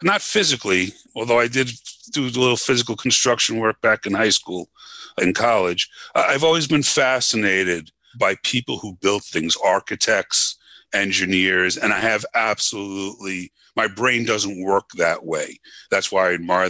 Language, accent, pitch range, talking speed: English, American, 90-110 Hz, 150 wpm